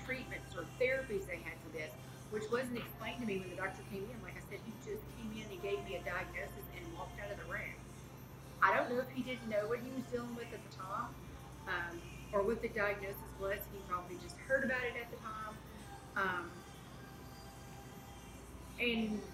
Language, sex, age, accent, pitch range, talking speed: English, female, 30-49, American, 195-245 Hz, 210 wpm